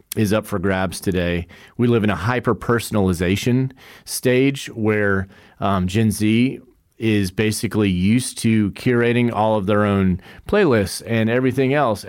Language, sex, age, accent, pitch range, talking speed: English, male, 40-59, American, 95-115 Hz, 145 wpm